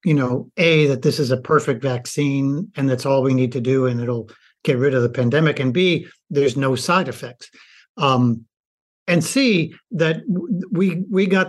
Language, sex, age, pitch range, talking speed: English, male, 60-79, 135-170 Hz, 195 wpm